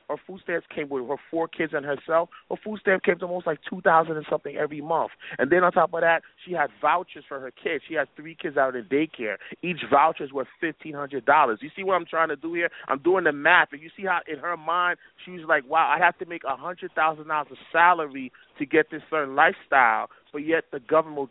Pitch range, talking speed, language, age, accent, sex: 150-180 Hz, 260 wpm, English, 30-49, American, male